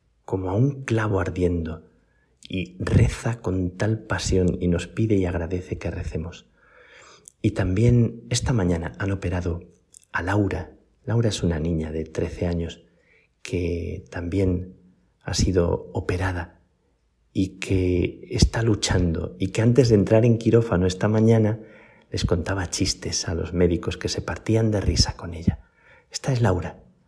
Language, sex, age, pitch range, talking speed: Spanish, male, 40-59, 85-105 Hz, 145 wpm